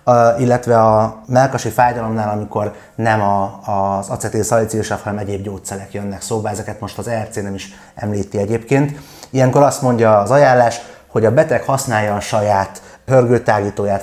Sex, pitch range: male, 105-125 Hz